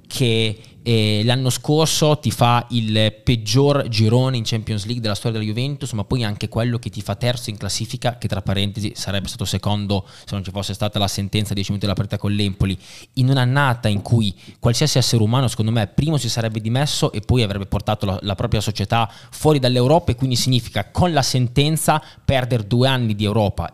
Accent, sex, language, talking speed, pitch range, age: native, male, Italian, 200 wpm, 110-150 Hz, 20-39